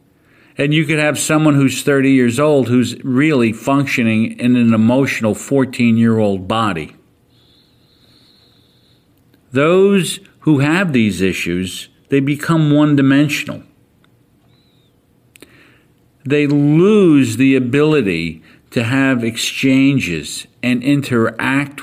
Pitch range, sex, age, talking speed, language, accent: 115-145 Hz, male, 50-69, 95 wpm, English, American